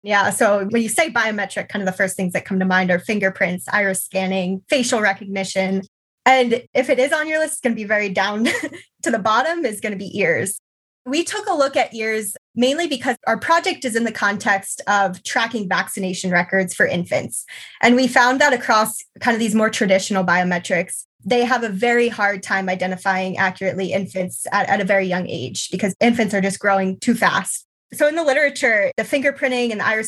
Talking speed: 210 wpm